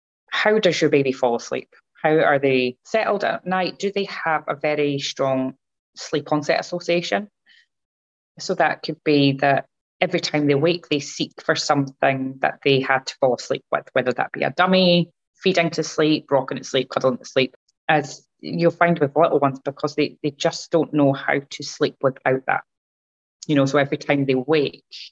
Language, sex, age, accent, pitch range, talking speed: English, female, 20-39, British, 130-155 Hz, 190 wpm